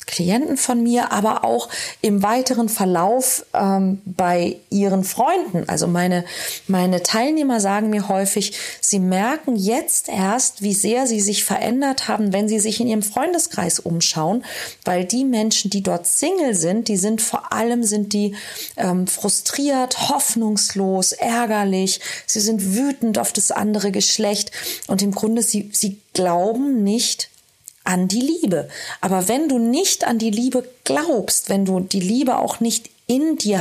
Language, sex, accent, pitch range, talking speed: German, female, German, 185-235 Hz, 155 wpm